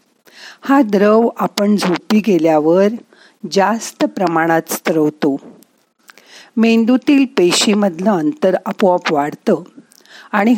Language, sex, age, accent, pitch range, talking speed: Marathi, female, 50-69, native, 175-235 Hz, 80 wpm